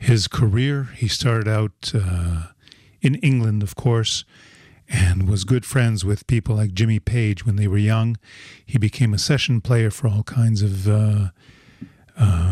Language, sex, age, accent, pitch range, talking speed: English, male, 50-69, American, 105-125 Hz, 160 wpm